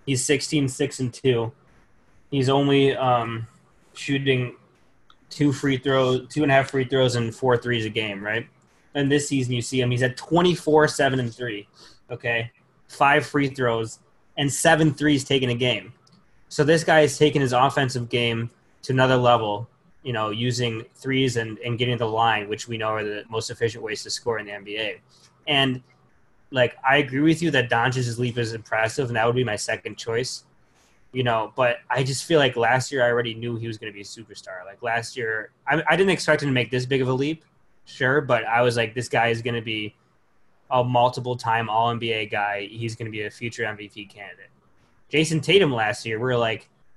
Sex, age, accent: male, 20-39, American